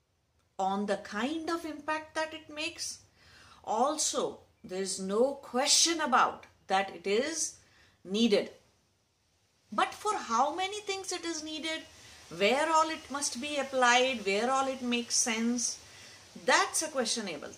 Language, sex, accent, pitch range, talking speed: English, female, Indian, 190-300 Hz, 135 wpm